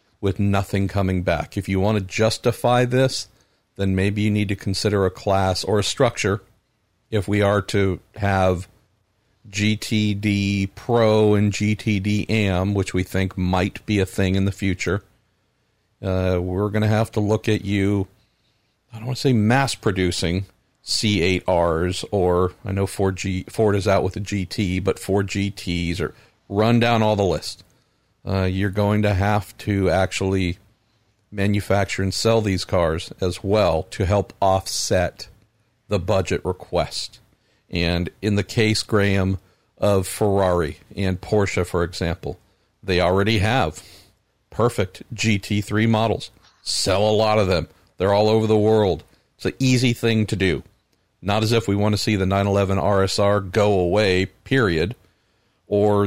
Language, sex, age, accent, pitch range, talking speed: English, male, 50-69, American, 95-110 Hz, 155 wpm